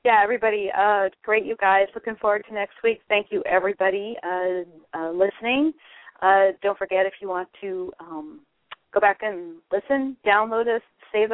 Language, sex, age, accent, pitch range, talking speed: English, female, 40-59, American, 180-205 Hz, 170 wpm